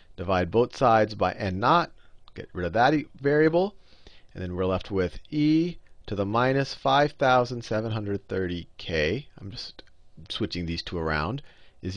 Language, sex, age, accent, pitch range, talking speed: English, male, 40-59, American, 90-130 Hz, 145 wpm